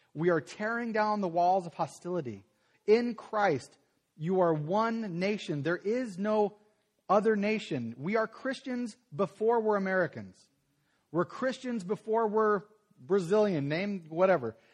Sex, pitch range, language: male, 145-210 Hz, English